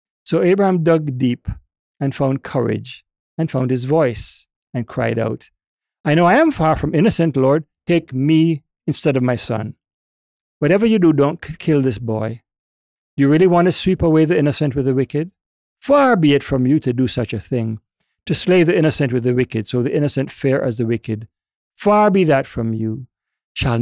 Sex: male